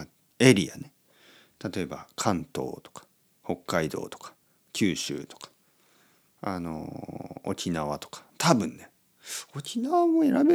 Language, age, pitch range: Japanese, 40-59, 80-135 Hz